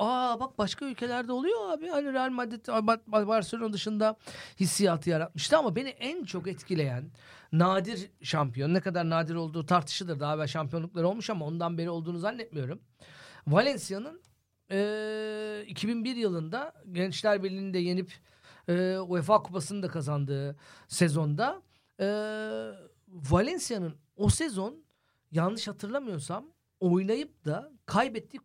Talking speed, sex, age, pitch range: 115 wpm, male, 50-69, 165-230 Hz